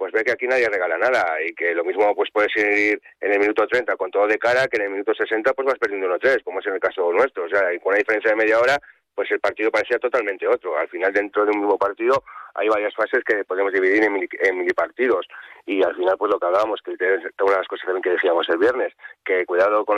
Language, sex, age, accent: Spanish, male, 30-49, Spanish